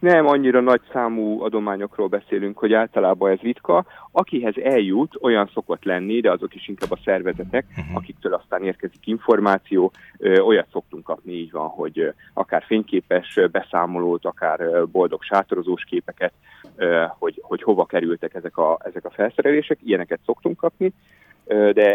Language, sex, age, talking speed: Hungarian, male, 30-49, 140 wpm